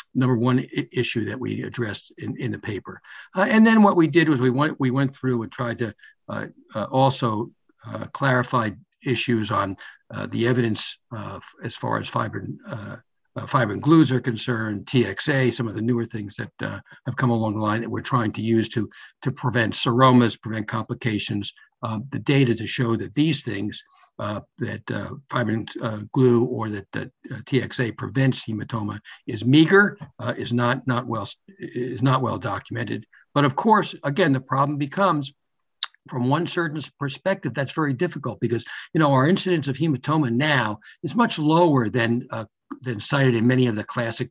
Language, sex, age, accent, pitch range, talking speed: English, male, 60-79, American, 115-145 Hz, 185 wpm